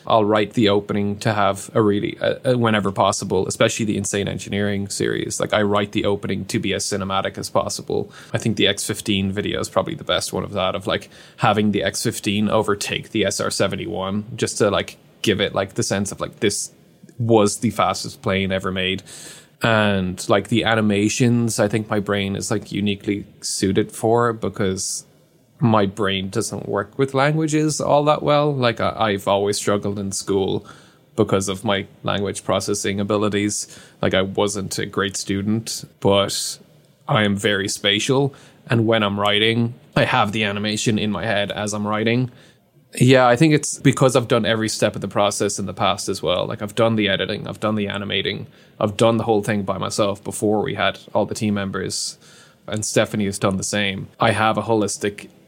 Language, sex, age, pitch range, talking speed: English, male, 20-39, 100-115 Hz, 190 wpm